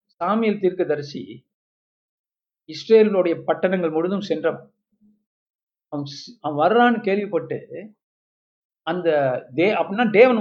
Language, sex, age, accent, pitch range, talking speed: Tamil, male, 50-69, native, 175-230 Hz, 65 wpm